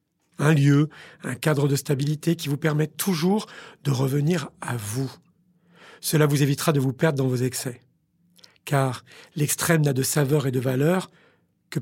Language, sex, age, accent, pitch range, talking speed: French, male, 40-59, French, 130-160 Hz, 160 wpm